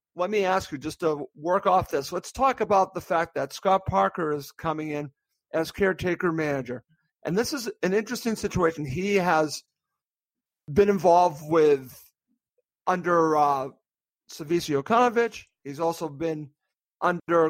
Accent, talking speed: American, 145 wpm